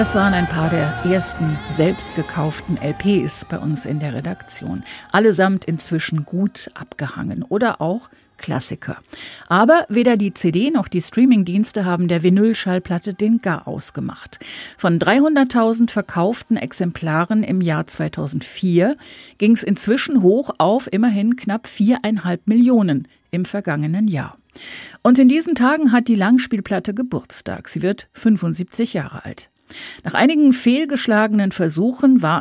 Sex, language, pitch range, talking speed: female, German, 175-235 Hz, 130 wpm